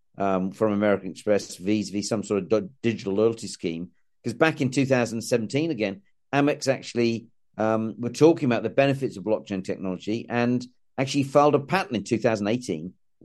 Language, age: English, 50-69